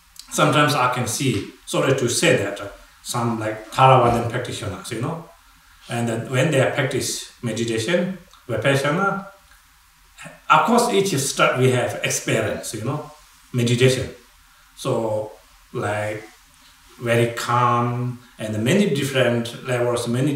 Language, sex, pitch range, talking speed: English, male, 115-135 Hz, 120 wpm